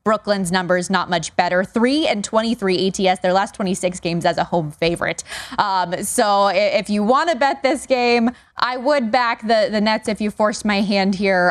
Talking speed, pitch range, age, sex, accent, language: 200 wpm, 185-260 Hz, 20-39, female, American, English